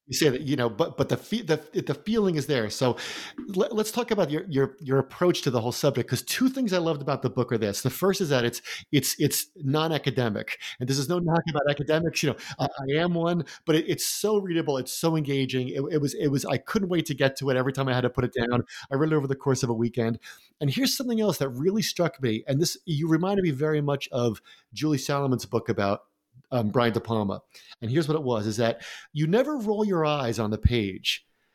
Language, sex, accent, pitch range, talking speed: English, male, American, 125-175 Hz, 255 wpm